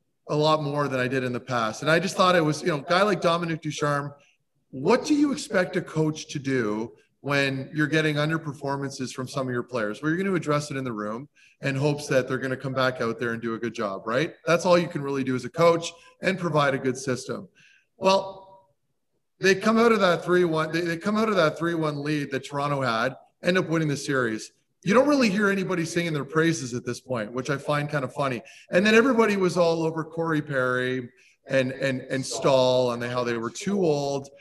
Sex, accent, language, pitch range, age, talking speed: male, American, English, 130-170 Hz, 30-49, 235 wpm